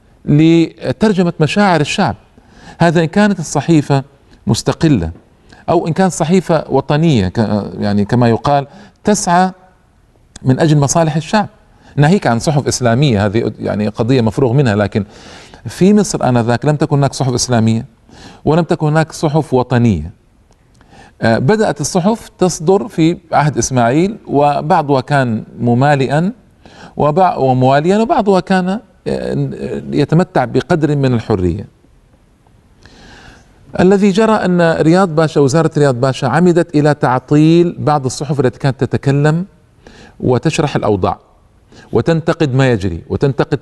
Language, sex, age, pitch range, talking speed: Arabic, male, 40-59, 120-170 Hz, 115 wpm